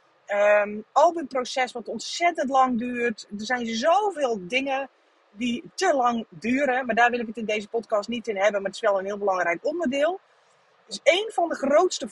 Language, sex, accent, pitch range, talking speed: Dutch, female, Dutch, 215-295 Hz, 200 wpm